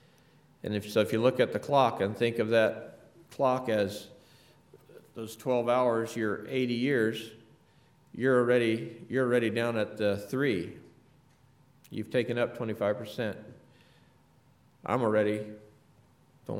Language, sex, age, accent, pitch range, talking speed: English, male, 50-69, American, 100-130 Hz, 135 wpm